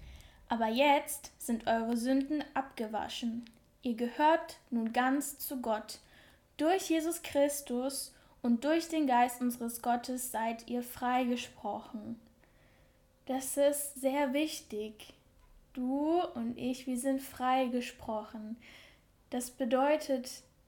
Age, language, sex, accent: 10-29, German, female, German